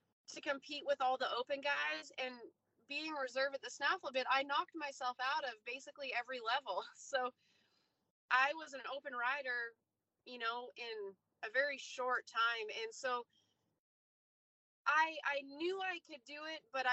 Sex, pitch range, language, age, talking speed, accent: female, 230-275 Hz, English, 20-39, 160 wpm, American